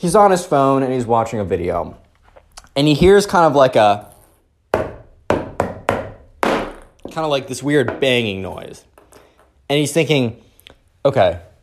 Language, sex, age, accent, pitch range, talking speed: English, male, 20-39, American, 105-155 Hz, 140 wpm